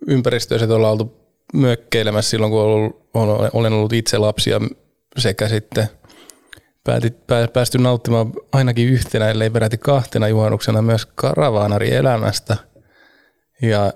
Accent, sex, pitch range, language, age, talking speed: native, male, 105-120 Hz, Finnish, 20-39, 110 wpm